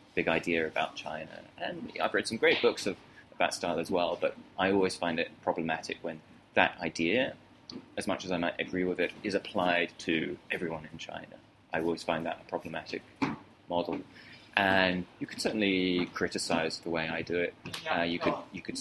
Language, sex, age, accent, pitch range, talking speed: English, male, 20-39, British, 80-95 Hz, 195 wpm